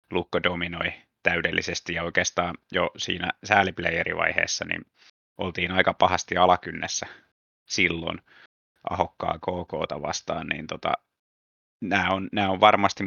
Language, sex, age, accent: Finnish, male, 30-49, native